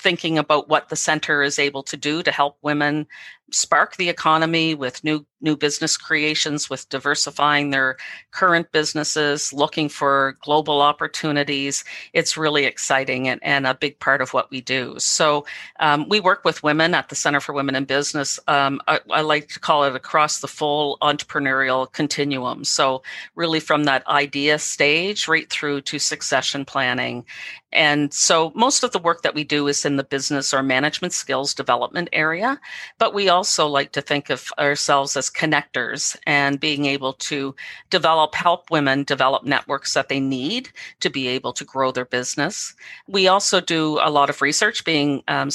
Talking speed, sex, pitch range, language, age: 175 wpm, female, 135-155 Hz, English, 50-69